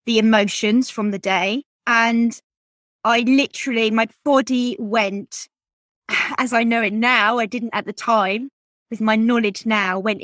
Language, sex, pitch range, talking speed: English, female, 200-240 Hz, 150 wpm